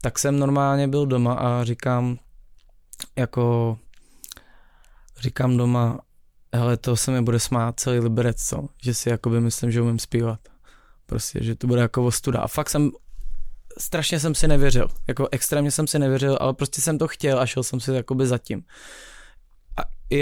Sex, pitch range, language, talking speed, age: male, 120-140 Hz, Czech, 165 wpm, 20-39